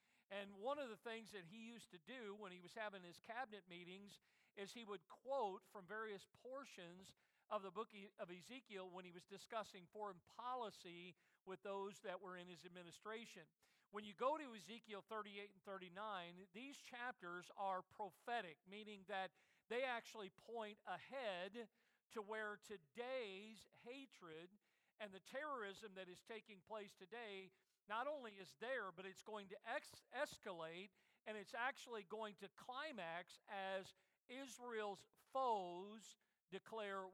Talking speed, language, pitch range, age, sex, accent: 150 wpm, English, 190-230 Hz, 50-69, male, American